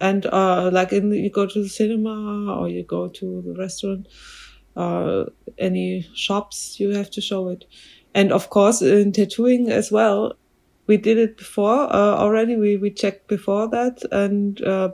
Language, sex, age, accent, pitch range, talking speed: English, female, 20-39, German, 170-205 Hz, 175 wpm